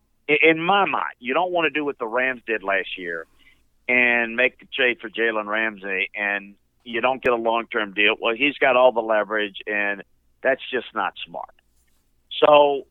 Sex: male